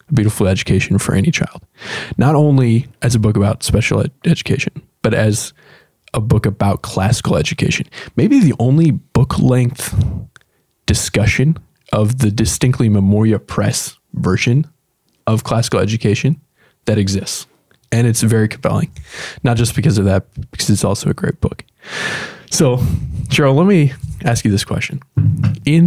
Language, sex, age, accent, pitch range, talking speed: English, male, 20-39, American, 105-135 Hz, 140 wpm